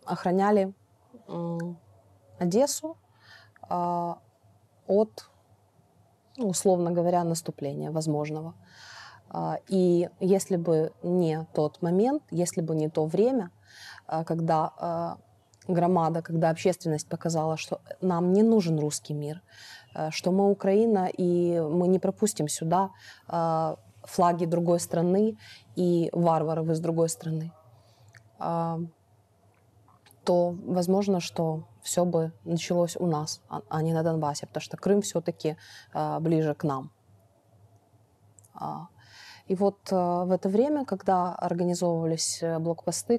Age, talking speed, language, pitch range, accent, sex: 20-39, 100 wpm, Ukrainian, 155-180 Hz, native, female